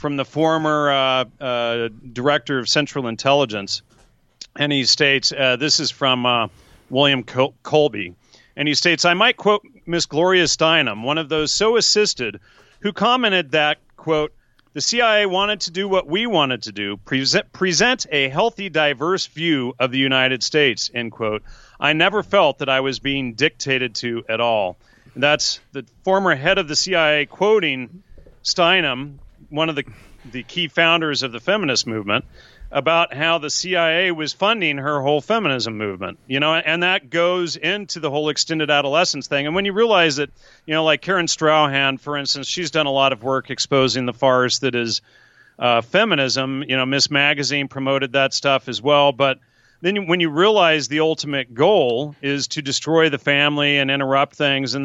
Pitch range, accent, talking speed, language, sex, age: 130-165 Hz, American, 175 wpm, English, male, 40-59